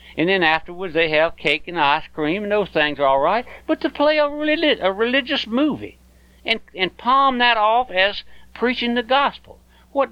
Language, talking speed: English, 195 wpm